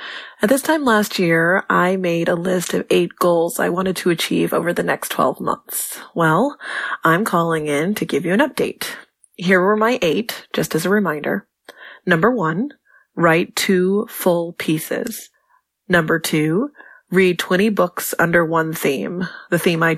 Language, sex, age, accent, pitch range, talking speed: English, female, 20-39, American, 165-210 Hz, 165 wpm